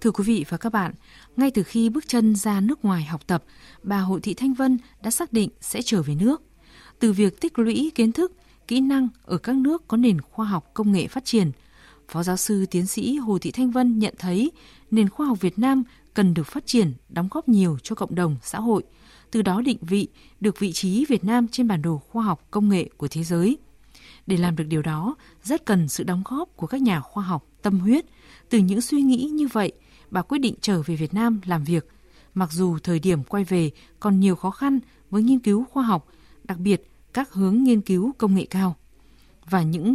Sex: female